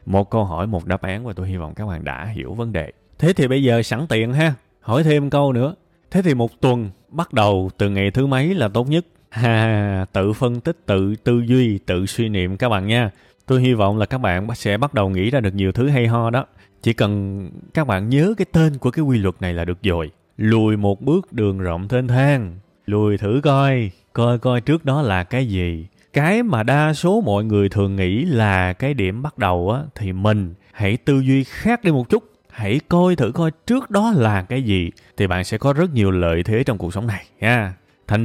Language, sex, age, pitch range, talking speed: Vietnamese, male, 20-39, 95-135 Hz, 230 wpm